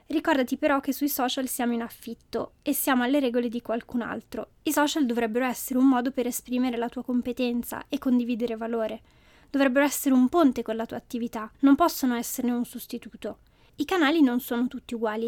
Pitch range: 240-285 Hz